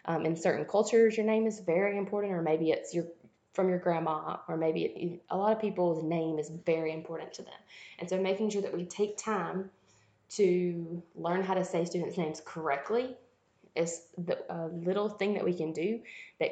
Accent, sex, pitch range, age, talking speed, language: American, female, 165-195 Hz, 20-39, 200 wpm, English